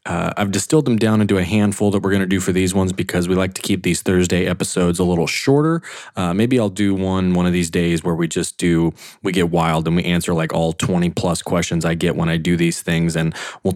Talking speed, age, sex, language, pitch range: 255 wpm, 20-39, male, English, 90-105 Hz